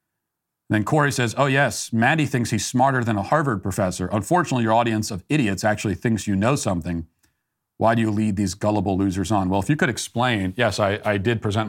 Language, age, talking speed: English, 40-59, 210 wpm